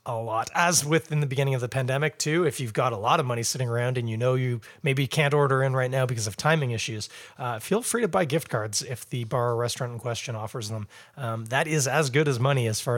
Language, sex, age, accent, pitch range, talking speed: English, male, 30-49, American, 115-155 Hz, 275 wpm